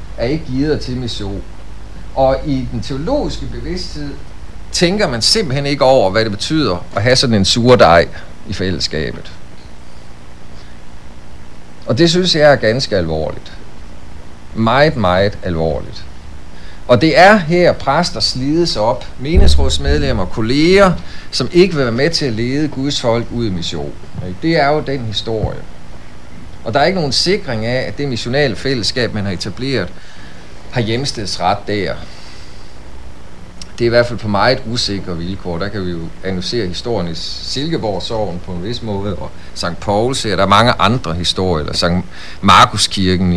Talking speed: 160 wpm